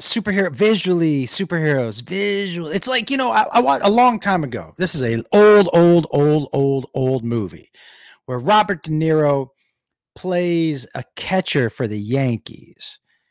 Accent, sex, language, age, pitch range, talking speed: American, male, English, 40-59, 140-205 Hz, 155 wpm